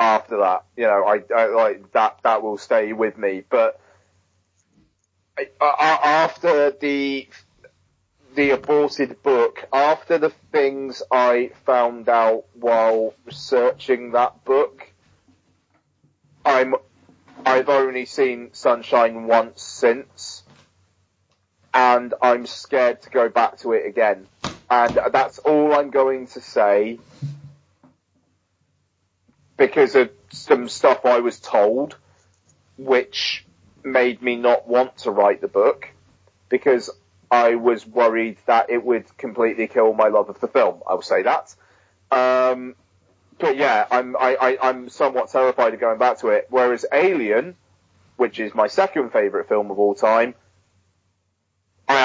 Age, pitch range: 30-49, 100-135 Hz